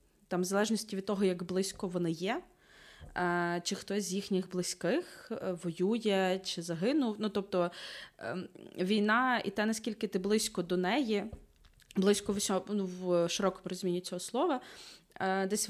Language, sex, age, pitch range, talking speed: Ukrainian, female, 20-39, 180-215 Hz, 140 wpm